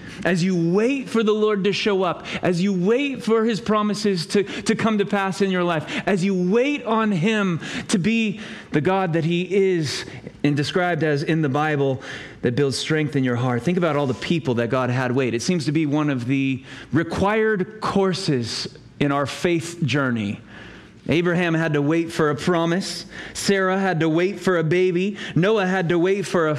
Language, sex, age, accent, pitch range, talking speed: English, male, 30-49, American, 150-210 Hz, 200 wpm